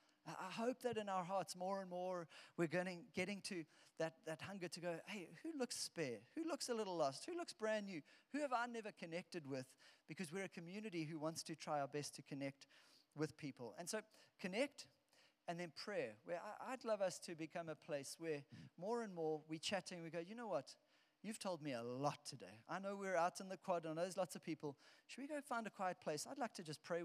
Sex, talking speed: male, 240 wpm